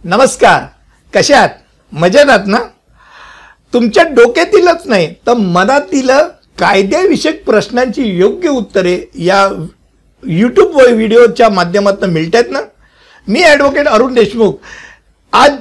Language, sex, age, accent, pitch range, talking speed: Hindi, male, 60-79, native, 195-290 Hz, 75 wpm